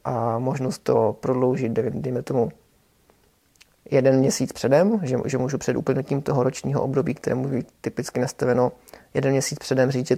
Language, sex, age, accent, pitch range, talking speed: Czech, male, 30-49, native, 130-145 Hz, 155 wpm